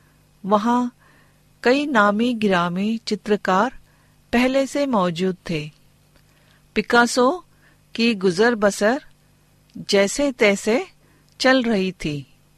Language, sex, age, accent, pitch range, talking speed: Hindi, female, 50-69, native, 185-245 Hz, 85 wpm